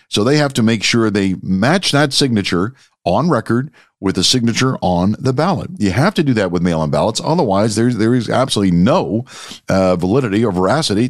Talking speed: 195 wpm